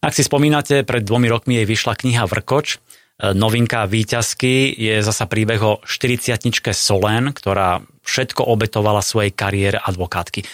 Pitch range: 100-120 Hz